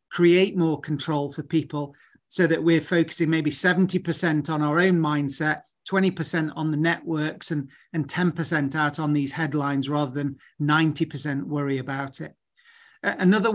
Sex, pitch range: male, 155-180 Hz